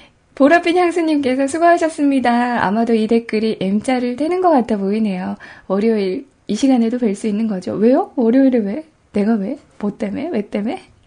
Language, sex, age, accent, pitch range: Korean, female, 10-29, native, 205-275 Hz